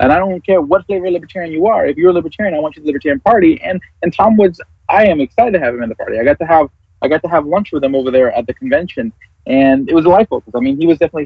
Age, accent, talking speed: 20-39, American, 320 wpm